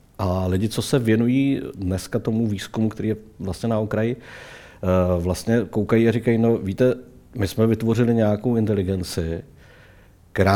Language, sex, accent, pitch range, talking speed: Czech, male, native, 95-115 Hz, 140 wpm